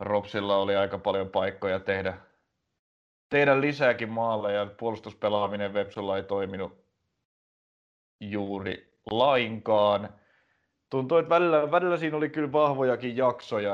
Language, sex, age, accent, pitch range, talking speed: Finnish, male, 30-49, native, 100-115 Hz, 110 wpm